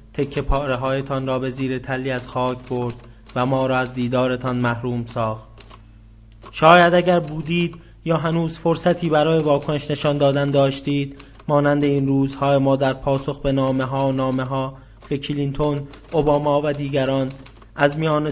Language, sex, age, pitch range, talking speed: English, male, 30-49, 130-150 Hz, 155 wpm